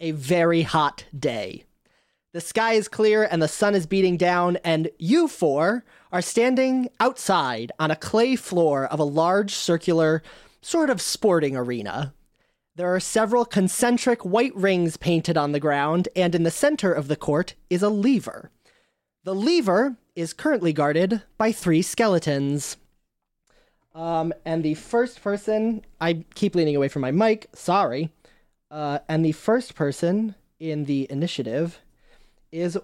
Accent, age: American, 30-49